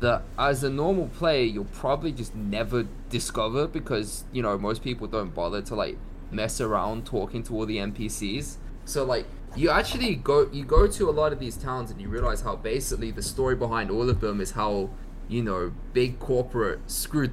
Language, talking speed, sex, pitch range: English, 195 wpm, male, 105-130 Hz